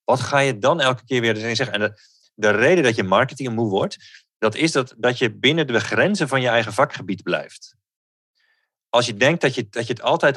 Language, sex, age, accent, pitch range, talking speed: Dutch, male, 40-59, Dutch, 105-130 Hz, 225 wpm